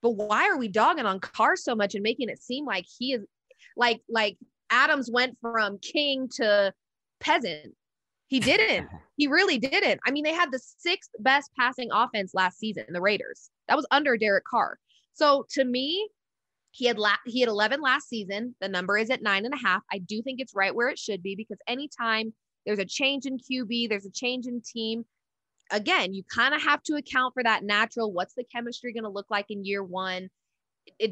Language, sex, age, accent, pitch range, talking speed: English, female, 20-39, American, 210-265 Hz, 210 wpm